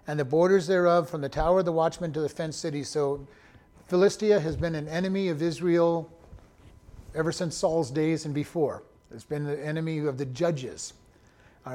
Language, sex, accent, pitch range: English, male, American, 145-185 Hz